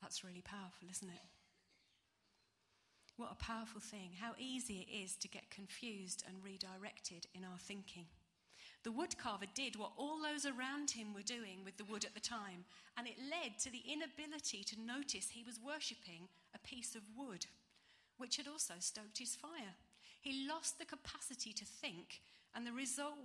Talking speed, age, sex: 175 wpm, 40-59, female